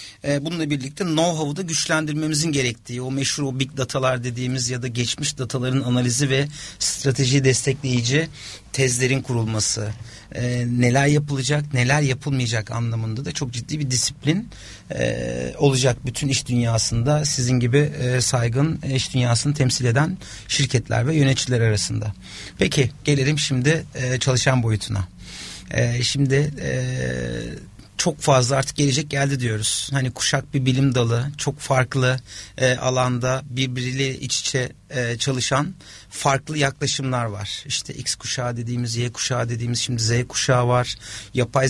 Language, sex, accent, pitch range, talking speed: Turkish, male, native, 120-140 Hz, 125 wpm